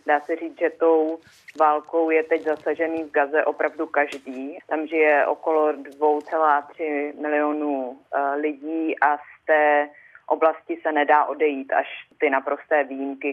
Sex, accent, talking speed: female, native, 135 wpm